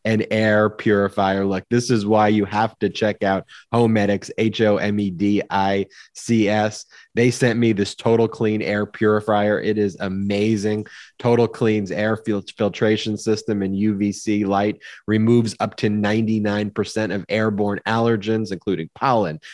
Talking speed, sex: 135 wpm, male